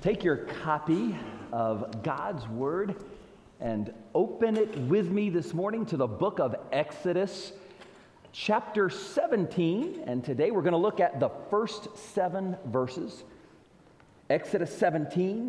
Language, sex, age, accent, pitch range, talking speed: English, male, 40-59, American, 160-210 Hz, 130 wpm